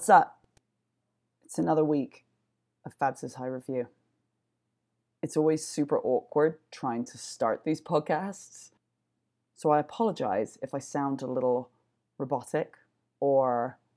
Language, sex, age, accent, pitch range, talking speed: English, female, 20-39, British, 135-160 Hz, 120 wpm